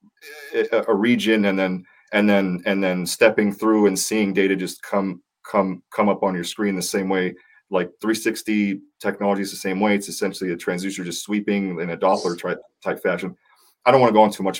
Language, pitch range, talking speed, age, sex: English, 95-120 Hz, 205 wpm, 30-49, male